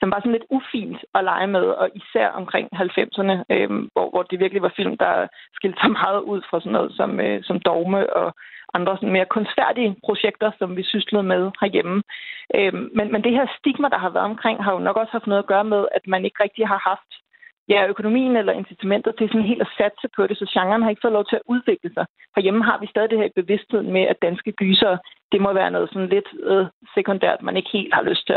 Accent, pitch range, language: native, 195-230 Hz, Danish